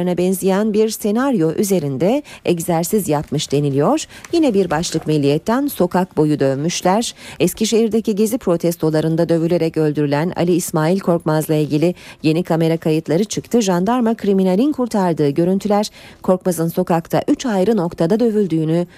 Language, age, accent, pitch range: Turkish, 40-59, native, 160-210 Hz